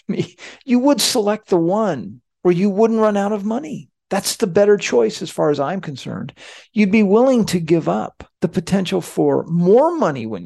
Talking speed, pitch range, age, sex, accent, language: 195 wpm, 145-200 Hz, 50-69, male, American, English